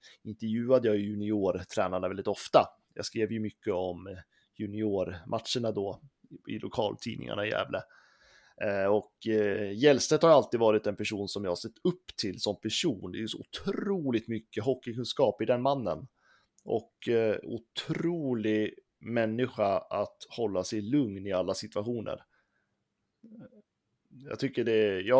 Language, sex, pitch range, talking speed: Swedish, male, 105-130 Hz, 130 wpm